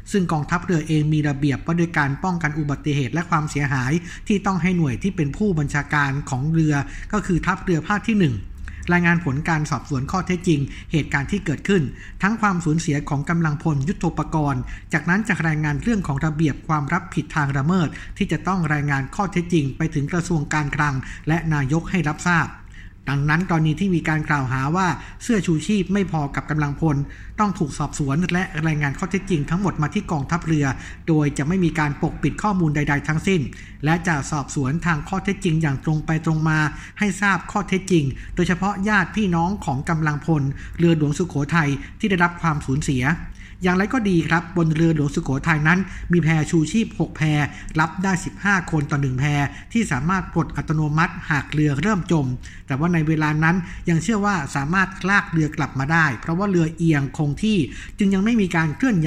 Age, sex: 60-79, male